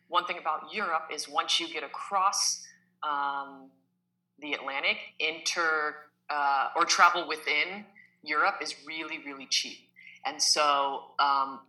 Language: English